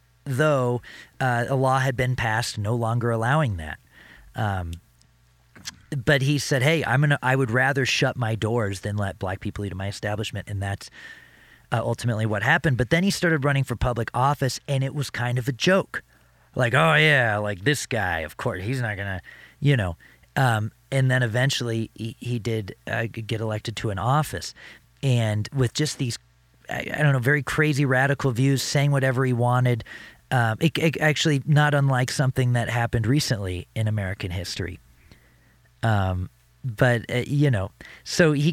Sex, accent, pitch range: male, American, 105-135 Hz